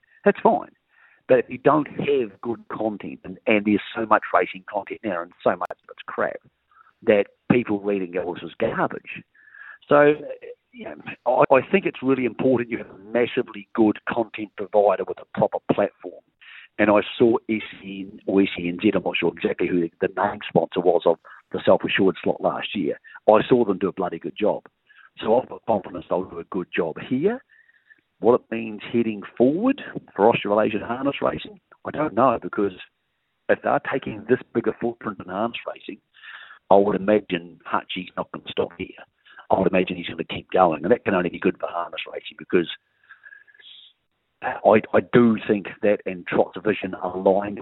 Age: 50-69